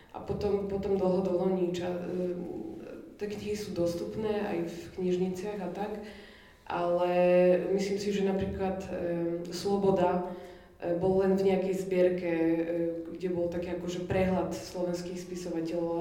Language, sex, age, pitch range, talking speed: Slovak, female, 20-39, 175-195 Hz, 125 wpm